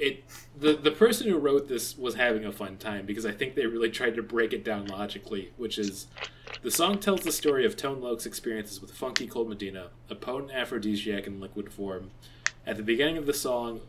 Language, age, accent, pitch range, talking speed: English, 20-39, American, 105-130 Hz, 215 wpm